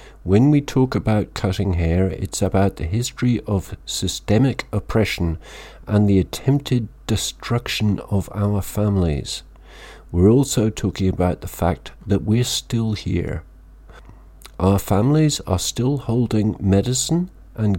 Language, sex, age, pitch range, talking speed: English, male, 50-69, 85-110 Hz, 125 wpm